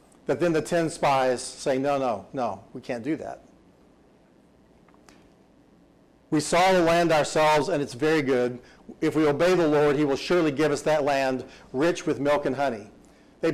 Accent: American